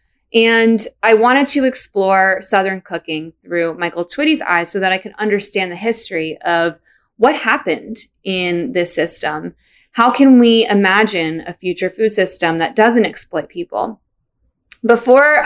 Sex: female